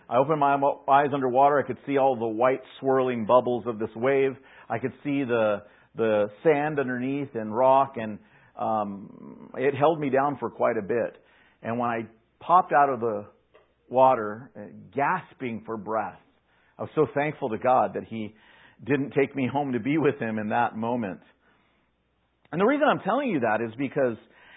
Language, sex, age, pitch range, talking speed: English, male, 50-69, 115-155 Hz, 185 wpm